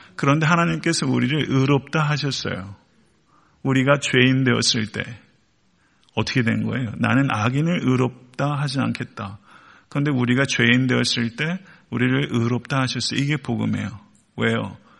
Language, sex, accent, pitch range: Korean, male, native, 120-145 Hz